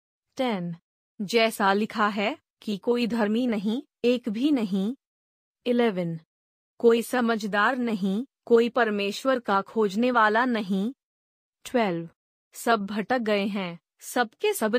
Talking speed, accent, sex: 120 wpm, native, female